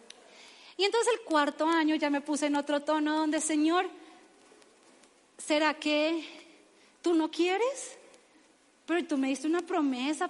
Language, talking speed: Spanish, 140 wpm